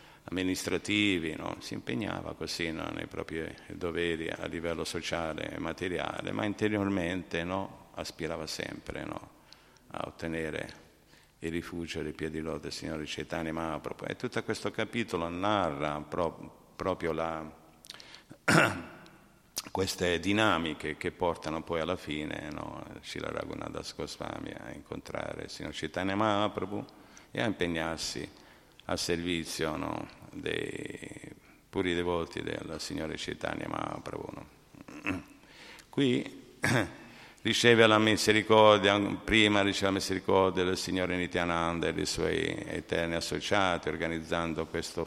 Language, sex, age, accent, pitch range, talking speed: Italian, male, 50-69, native, 85-100 Hz, 120 wpm